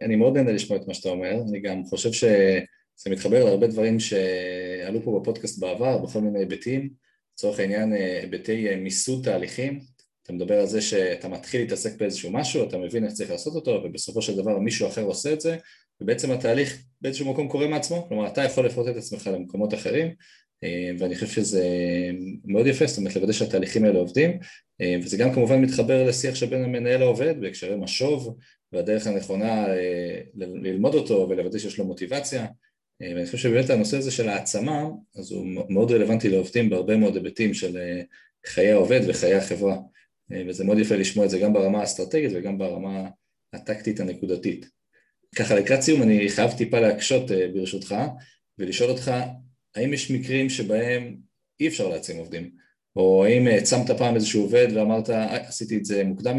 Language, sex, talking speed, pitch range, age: Hebrew, male, 155 wpm, 95-130 Hz, 20-39